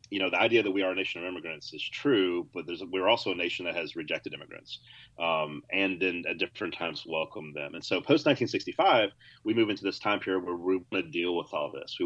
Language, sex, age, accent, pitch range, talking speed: English, male, 30-49, American, 85-145 Hz, 250 wpm